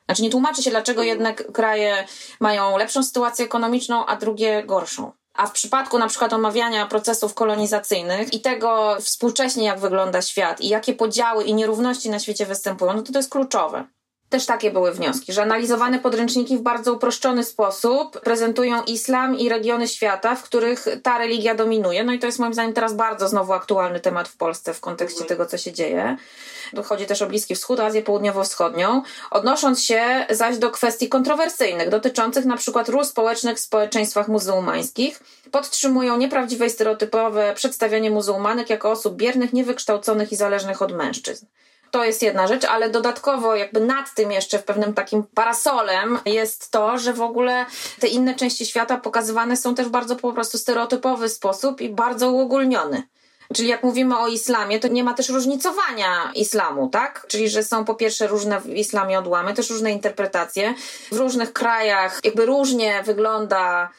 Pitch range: 210-245 Hz